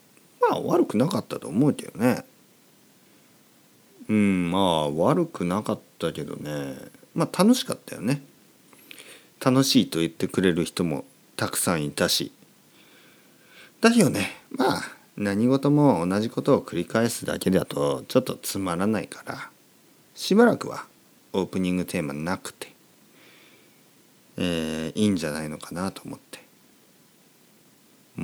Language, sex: Japanese, male